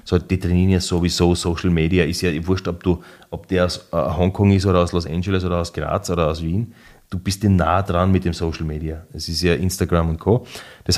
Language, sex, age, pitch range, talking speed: German, male, 30-49, 90-120 Hz, 245 wpm